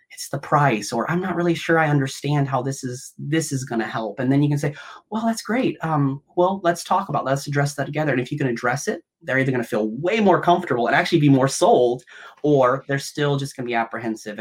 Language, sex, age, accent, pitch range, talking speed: English, male, 30-49, American, 115-145 Hz, 260 wpm